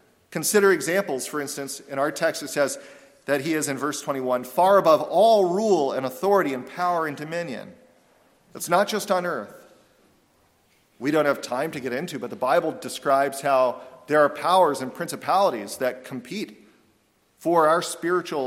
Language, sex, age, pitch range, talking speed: English, male, 40-59, 140-185 Hz, 170 wpm